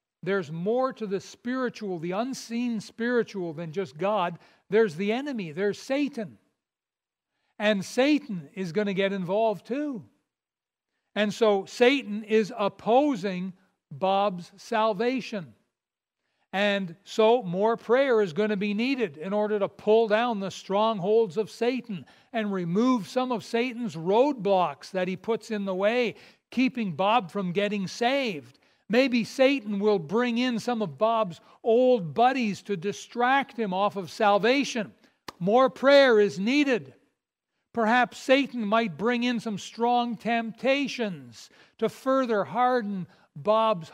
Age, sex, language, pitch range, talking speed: 60-79, male, English, 200-245 Hz, 135 wpm